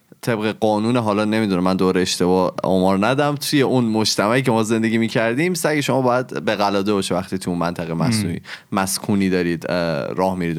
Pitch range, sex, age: 110-165 Hz, male, 20-39